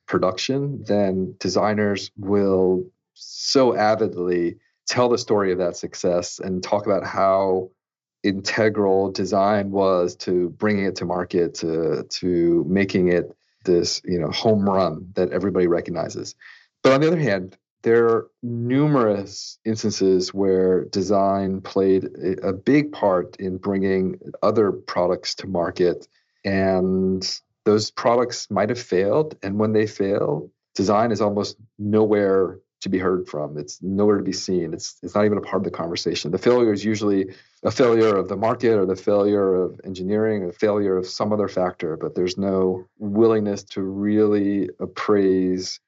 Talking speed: 150 wpm